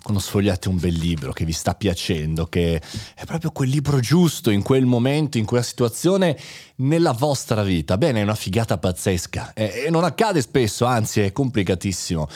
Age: 30-49